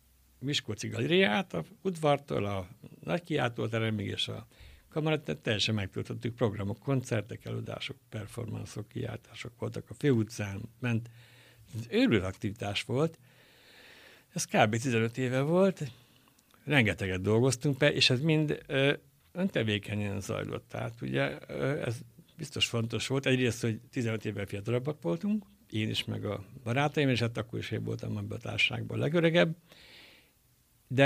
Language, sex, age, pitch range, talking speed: Hungarian, male, 60-79, 110-130 Hz, 130 wpm